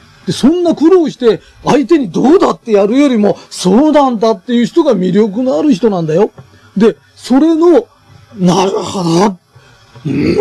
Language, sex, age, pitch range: Japanese, male, 40-59, 175-285 Hz